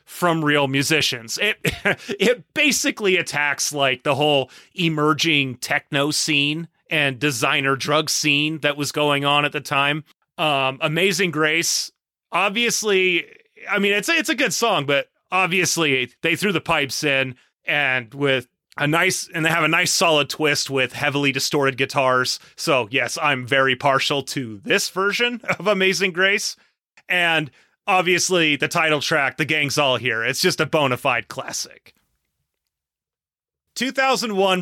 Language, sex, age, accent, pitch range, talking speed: English, male, 30-49, American, 140-180 Hz, 145 wpm